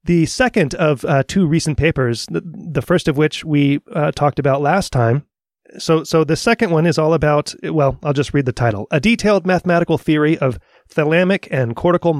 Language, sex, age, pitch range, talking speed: English, male, 30-49, 130-170 Hz, 195 wpm